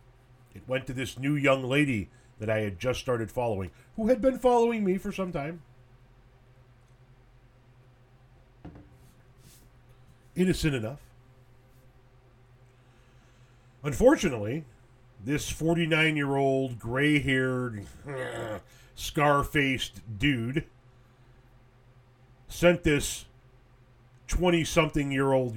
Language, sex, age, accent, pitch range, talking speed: English, male, 40-59, American, 125-145 Hz, 75 wpm